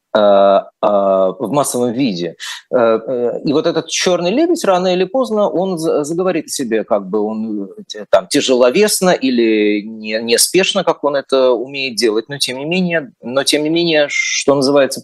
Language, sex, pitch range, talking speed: Russian, male, 105-155 Hz, 150 wpm